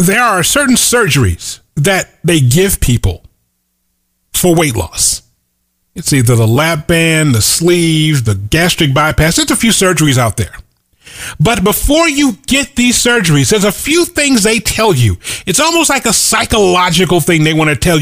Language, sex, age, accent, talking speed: English, male, 40-59, American, 165 wpm